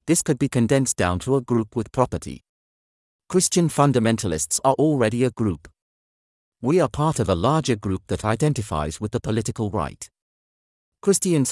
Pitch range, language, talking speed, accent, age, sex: 95-135 Hz, English, 155 wpm, British, 40-59, male